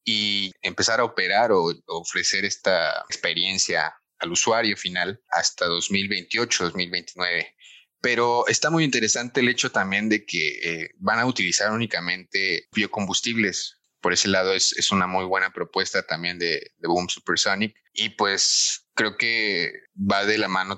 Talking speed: 145 wpm